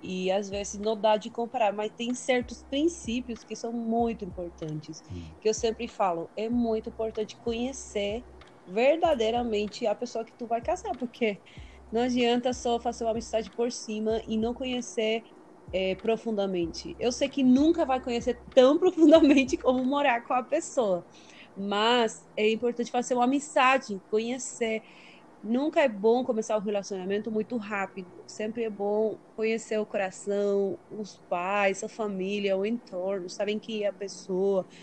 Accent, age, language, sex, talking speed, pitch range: Brazilian, 20-39, Portuguese, female, 150 wpm, 205-250 Hz